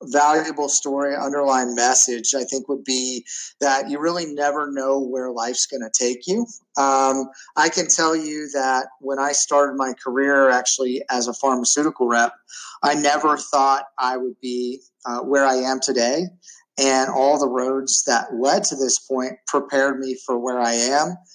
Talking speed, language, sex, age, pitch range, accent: 170 wpm, English, male, 30-49, 130-150 Hz, American